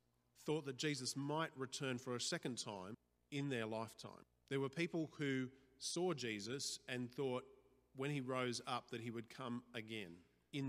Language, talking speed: English, 170 wpm